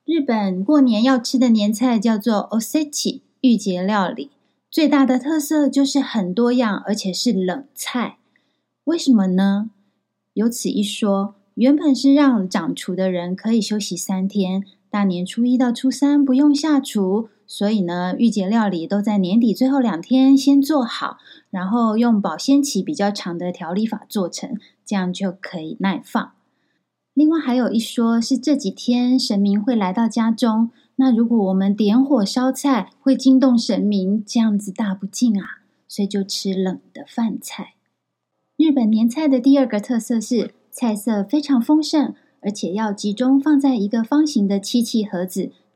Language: Chinese